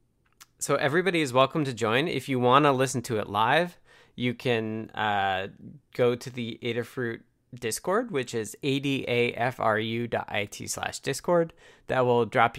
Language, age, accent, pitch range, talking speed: English, 20-39, American, 115-145 Hz, 145 wpm